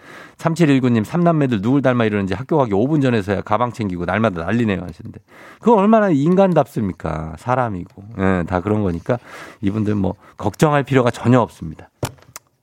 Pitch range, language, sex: 105-160 Hz, Korean, male